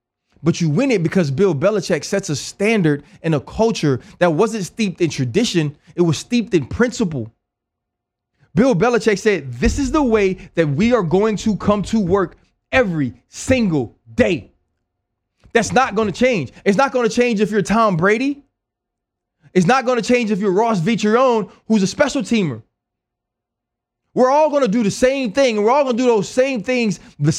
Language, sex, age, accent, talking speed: English, male, 20-39, American, 185 wpm